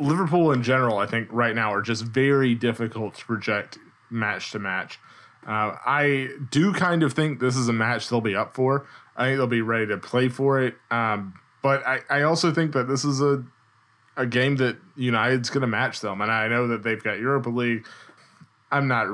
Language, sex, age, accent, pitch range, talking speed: English, male, 20-39, American, 110-130 Hz, 210 wpm